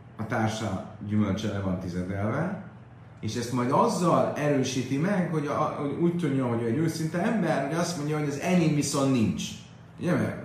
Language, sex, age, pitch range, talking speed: Hungarian, male, 30-49, 115-160 Hz, 170 wpm